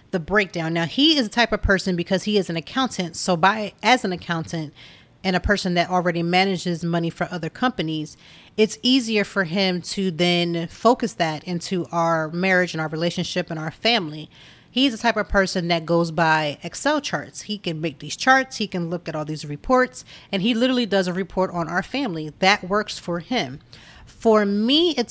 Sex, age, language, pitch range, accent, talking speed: female, 30-49, English, 170-210 Hz, American, 200 wpm